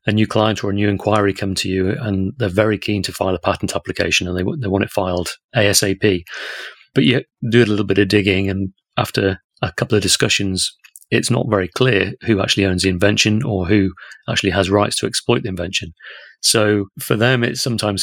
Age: 30-49